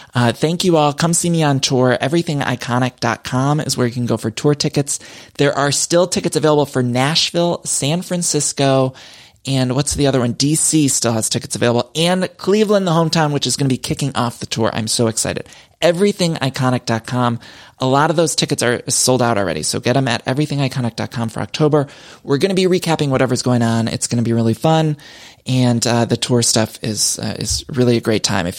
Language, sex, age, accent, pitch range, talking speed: English, male, 20-39, American, 120-155 Hz, 205 wpm